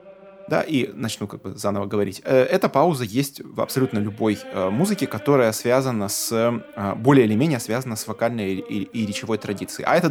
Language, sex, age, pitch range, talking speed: Russian, male, 20-39, 105-140 Hz, 190 wpm